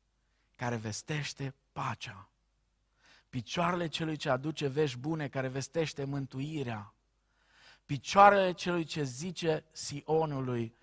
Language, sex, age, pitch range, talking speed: Romanian, male, 50-69, 115-150 Hz, 95 wpm